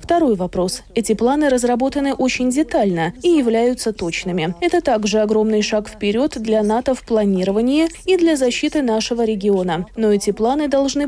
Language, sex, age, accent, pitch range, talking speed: Russian, female, 20-39, native, 210-280 Hz, 150 wpm